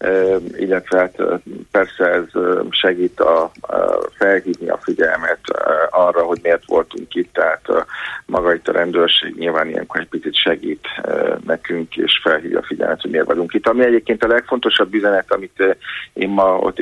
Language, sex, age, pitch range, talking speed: Hungarian, male, 50-69, 95-110 Hz, 155 wpm